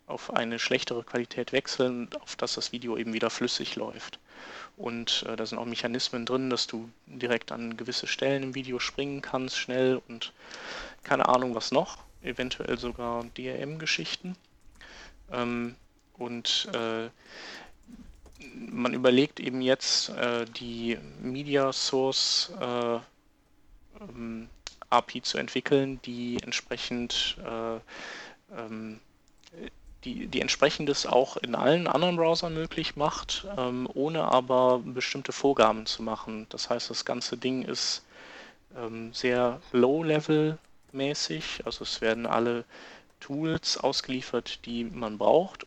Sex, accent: male, German